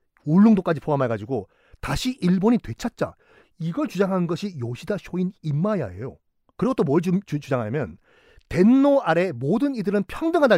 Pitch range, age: 160-265 Hz, 40-59